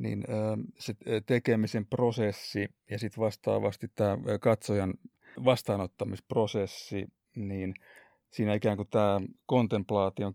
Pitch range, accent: 105-135 Hz, native